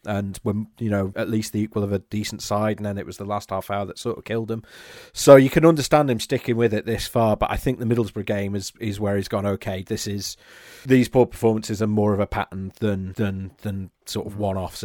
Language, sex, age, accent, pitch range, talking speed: English, male, 40-59, British, 100-115 Hz, 255 wpm